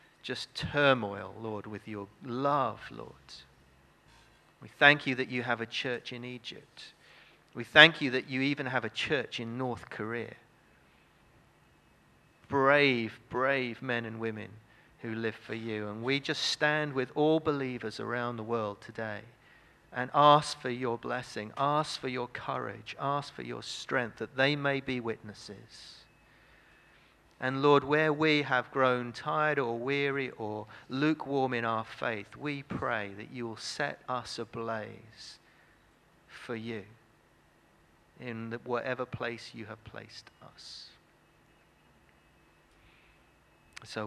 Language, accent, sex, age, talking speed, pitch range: English, British, male, 40-59, 135 wpm, 115-135 Hz